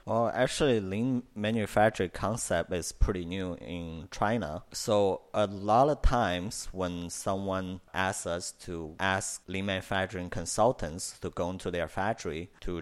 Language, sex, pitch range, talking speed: English, male, 90-100 Hz, 140 wpm